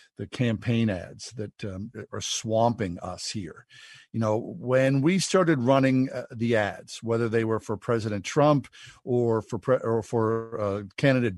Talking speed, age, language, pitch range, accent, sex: 160 wpm, 50-69, English, 115-150 Hz, American, male